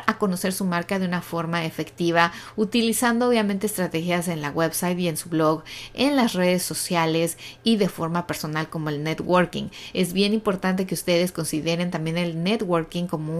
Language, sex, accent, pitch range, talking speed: Spanish, female, Mexican, 165-200 Hz, 170 wpm